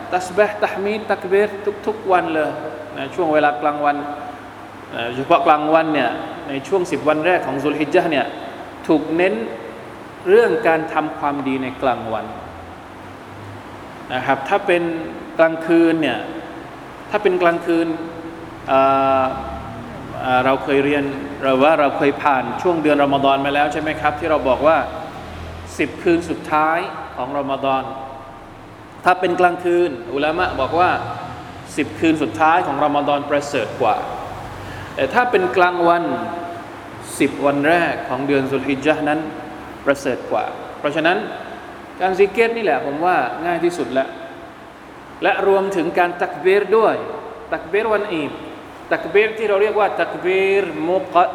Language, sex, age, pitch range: Thai, male, 20-39, 145-195 Hz